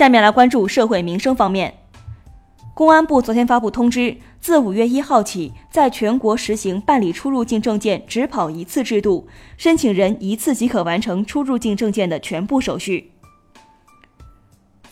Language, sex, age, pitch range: Chinese, female, 20-39, 195-255 Hz